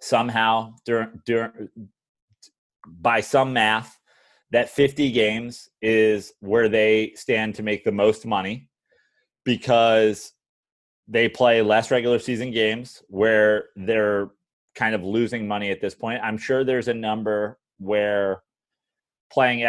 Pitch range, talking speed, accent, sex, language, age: 105-125 Hz, 120 wpm, American, male, English, 30-49